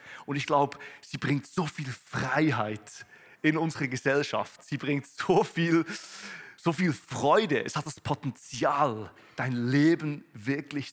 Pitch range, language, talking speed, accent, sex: 125-155 Hz, German, 135 wpm, German, male